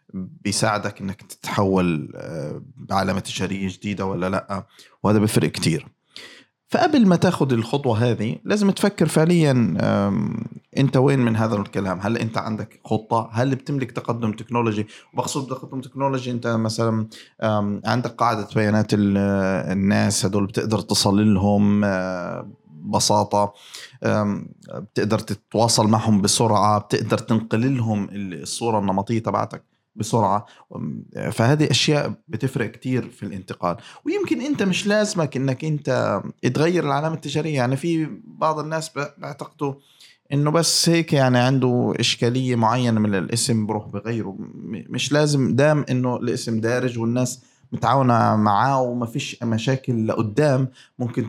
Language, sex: Arabic, male